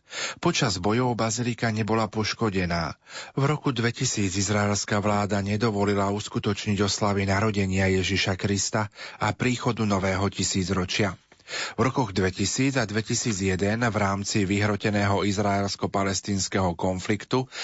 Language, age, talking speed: Slovak, 40-59, 105 wpm